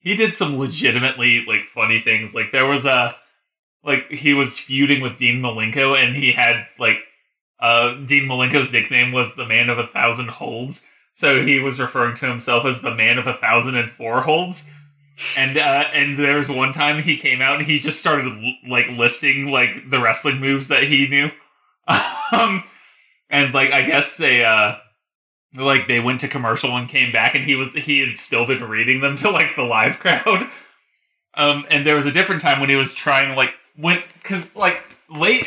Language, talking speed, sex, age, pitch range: English, 195 wpm, male, 20-39, 125-145 Hz